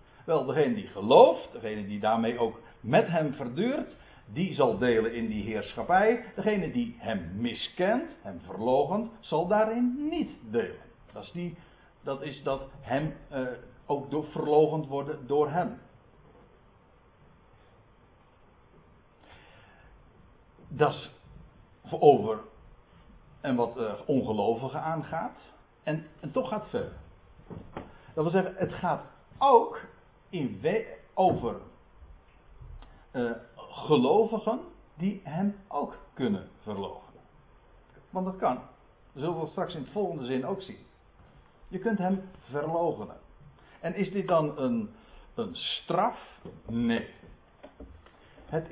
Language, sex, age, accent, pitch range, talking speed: Dutch, male, 60-79, Dutch, 125-200 Hz, 120 wpm